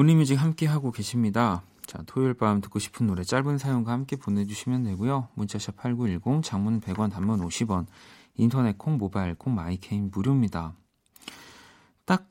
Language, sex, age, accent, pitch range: Korean, male, 40-59, native, 95-130 Hz